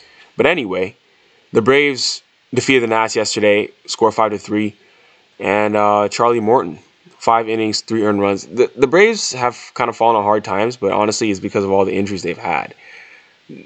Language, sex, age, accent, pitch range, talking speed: English, male, 10-29, American, 100-140 Hz, 180 wpm